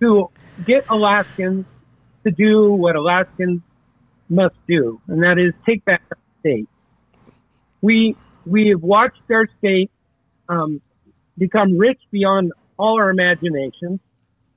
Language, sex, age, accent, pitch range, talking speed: English, male, 50-69, American, 160-215 Hz, 120 wpm